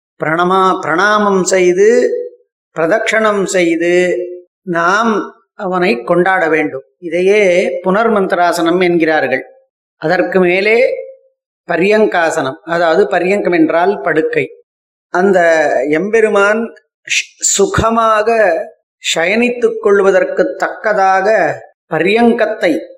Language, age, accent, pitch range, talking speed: Tamil, 30-49, native, 180-225 Hz, 70 wpm